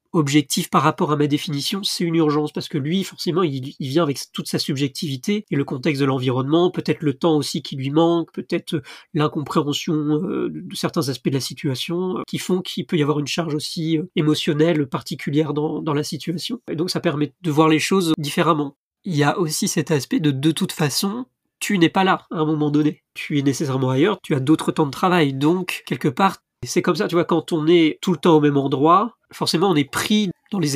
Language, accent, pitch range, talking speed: French, French, 145-175 Hz, 225 wpm